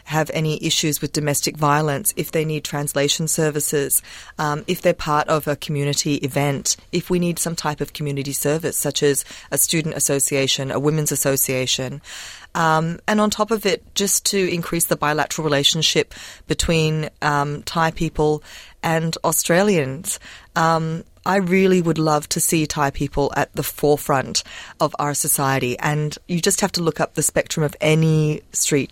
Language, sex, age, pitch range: Thai, female, 30-49, 140-170 Hz